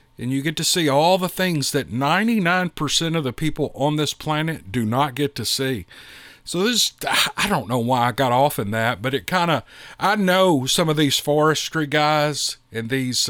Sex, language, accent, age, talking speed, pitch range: male, English, American, 50-69, 205 wpm, 125-155 Hz